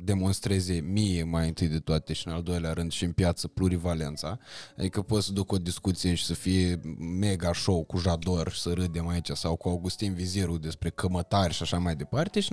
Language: Romanian